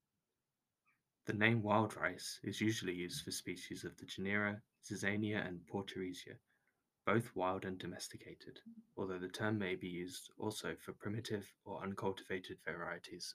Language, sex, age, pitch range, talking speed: English, male, 10-29, 95-110 Hz, 140 wpm